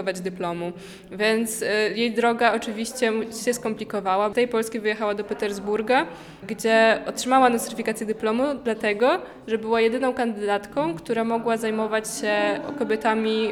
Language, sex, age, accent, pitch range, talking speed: Polish, female, 20-39, native, 205-230 Hz, 120 wpm